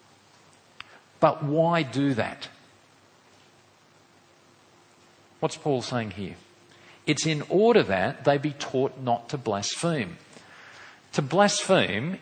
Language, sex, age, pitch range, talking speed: English, male, 50-69, 120-155 Hz, 100 wpm